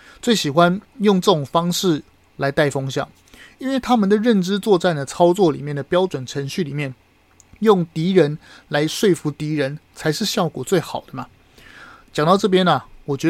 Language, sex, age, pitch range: Chinese, male, 30-49, 145-185 Hz